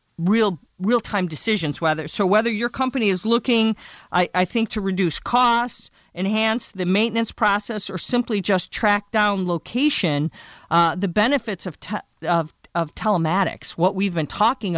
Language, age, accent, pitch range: English, 40-59, American, 175-215 Hz